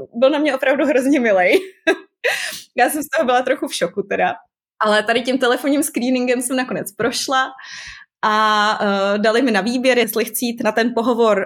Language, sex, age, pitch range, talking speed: Czech, female, 20-39, 210-250 Hz, 180 wpm